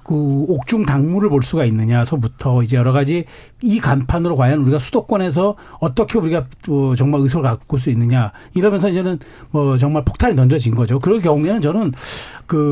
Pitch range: 140-195 Hz